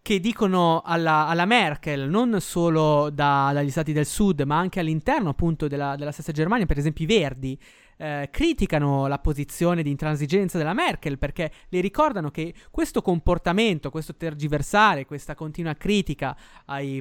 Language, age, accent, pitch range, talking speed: Italian, 20-39, native, 145-200 Hz, 150 wpm